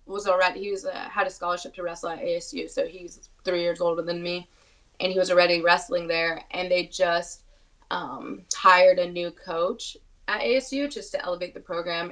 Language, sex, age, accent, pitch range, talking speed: English, female, 20-39, American, 170-205 Hz, 200 wpm